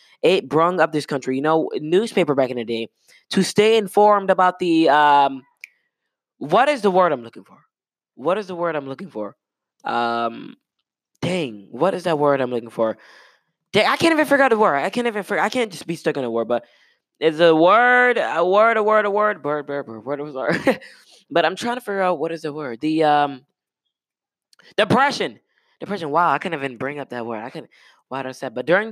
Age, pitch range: 20-39, 130-180 Hz